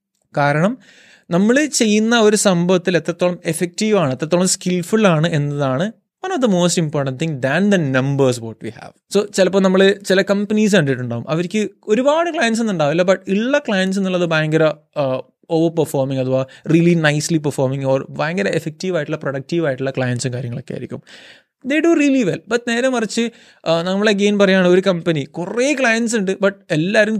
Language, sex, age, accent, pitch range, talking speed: Malayalam, male, 20-39, native, 150-205 Hz, 155 wpm